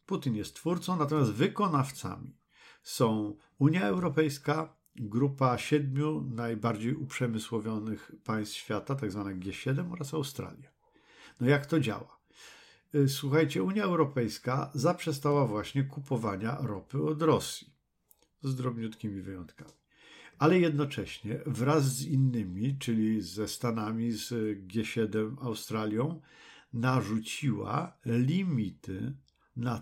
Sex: male